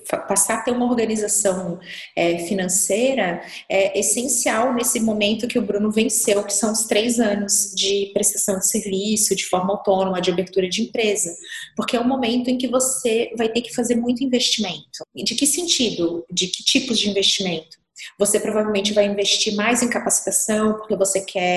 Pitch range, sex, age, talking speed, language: 195-240 Hz, female, 20-39, 170 wpm, Portuguese